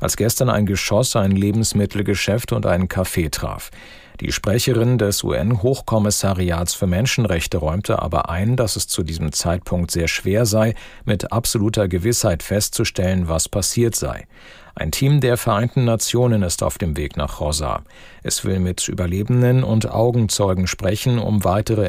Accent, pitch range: German, 100-120 Hz